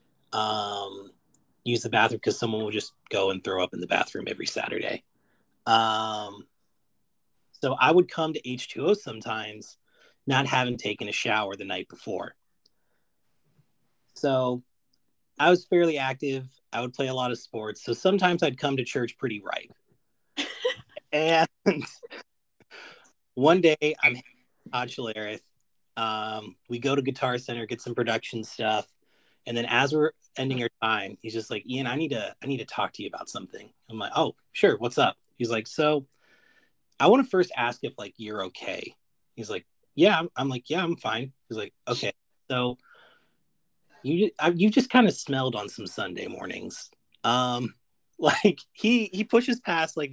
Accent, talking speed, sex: American, 165 wpm, male